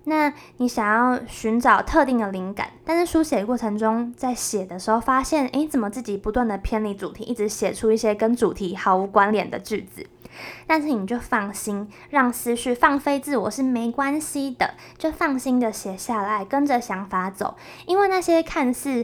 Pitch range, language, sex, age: 205-255 Hz, Chinese, female, 20-39